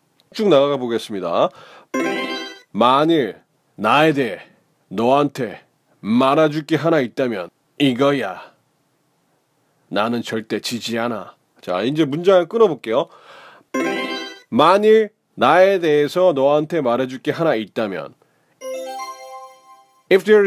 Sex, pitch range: male, 120-170 Hz